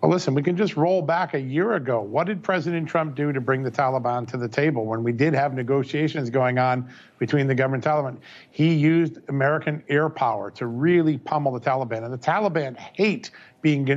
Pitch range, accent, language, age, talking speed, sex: 140-165 Hz, American, English, 50-69, 210 wpm, male